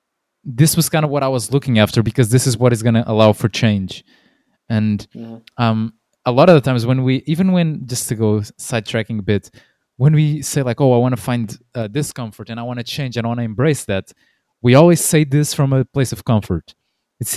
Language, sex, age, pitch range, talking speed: English, male, 20-39, 110-145 Hz, 235 wpm